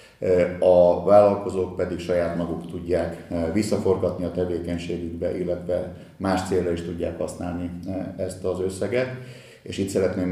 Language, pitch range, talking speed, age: Hungarian, 85-95 Hz, 120 wpm, 50-69